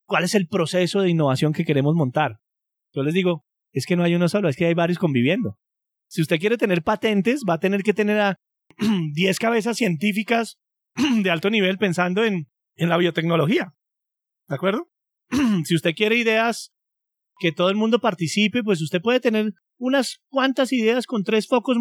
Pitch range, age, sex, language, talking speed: 165-210 Hz, 30-49, male, Spanish, 180 wpm